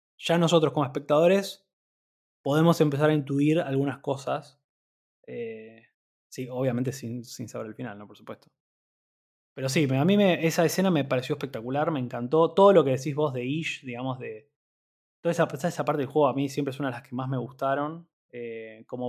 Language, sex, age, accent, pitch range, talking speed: Spanish, male, 20-39, Argentinian, 125-150 Hz, 190 wpm